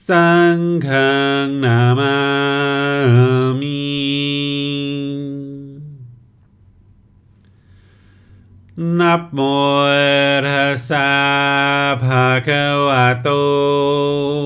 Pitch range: 135-145 Hz